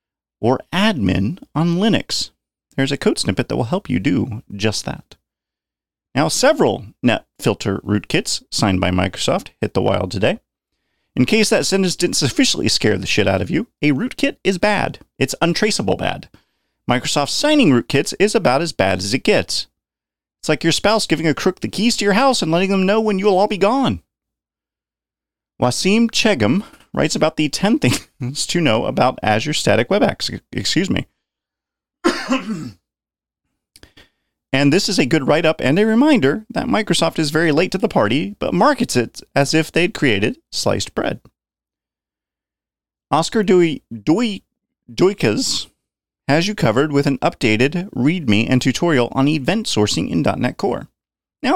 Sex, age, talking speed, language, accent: male, 30-49, 160 wpm, English, American